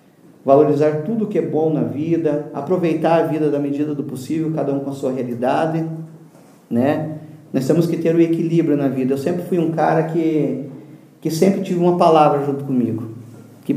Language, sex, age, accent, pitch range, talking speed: Portuguese, male, 40-59, Brazilian, 135-160 Hz, 195 wpm